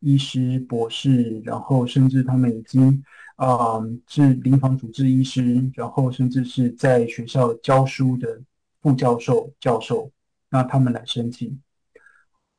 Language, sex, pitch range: Chinese, male, 120-140 Hz